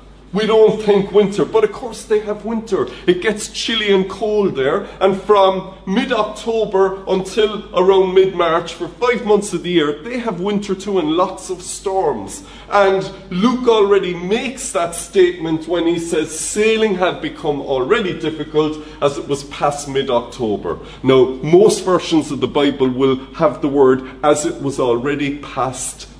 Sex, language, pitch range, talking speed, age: male, English, 130-190 Hz, 160 wpm, 40-59